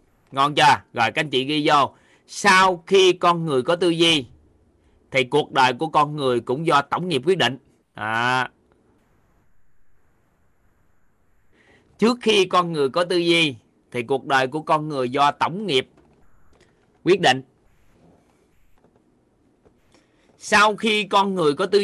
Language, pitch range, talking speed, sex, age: Vietnamese, 120-175 Hz, 140 wpm, male, 20-39